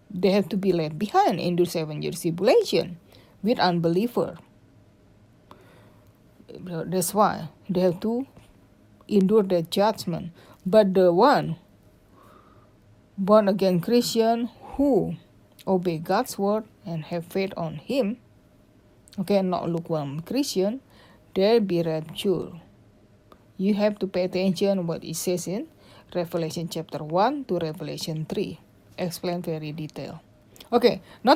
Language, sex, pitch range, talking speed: English, female, 160-215 Hz, 120 wpm